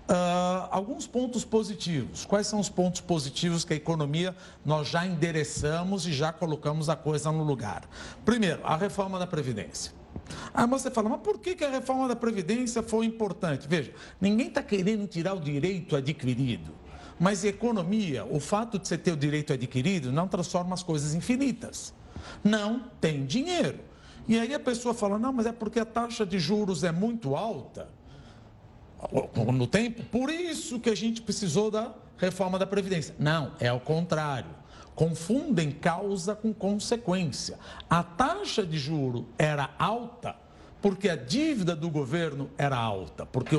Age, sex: 50-69, male